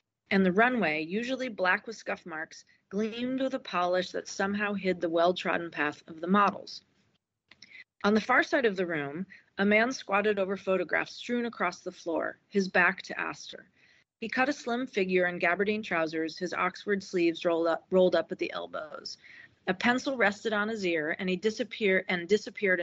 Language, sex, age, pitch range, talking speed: English, female, 40-59, 175-220 Hz, 185 wpm